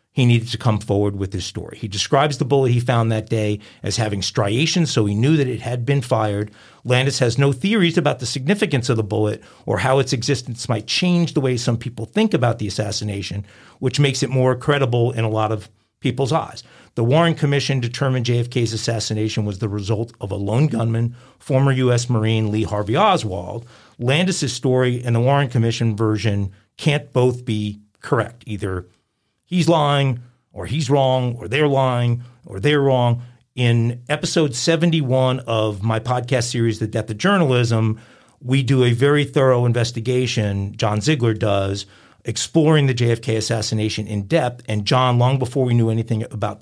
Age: 50-69